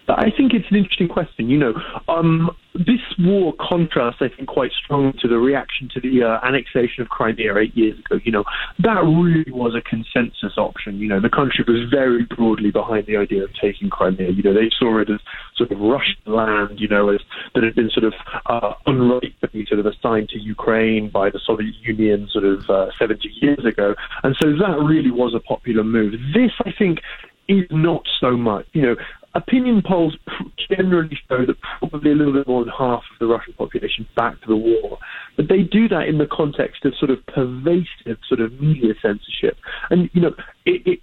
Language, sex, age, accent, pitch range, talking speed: English, male, 20-39, British, 115-160 Hz, 210 wpm